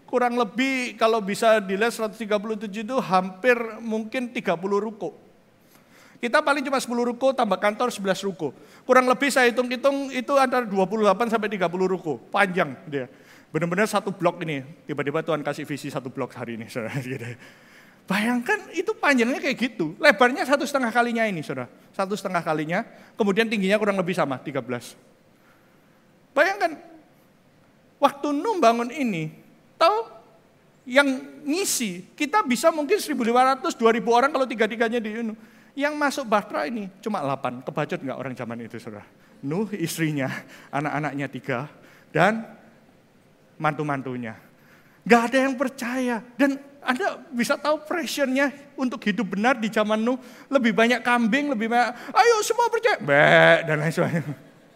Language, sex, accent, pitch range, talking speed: Indonesian, male, native, 200-275 Hz, 135 wpm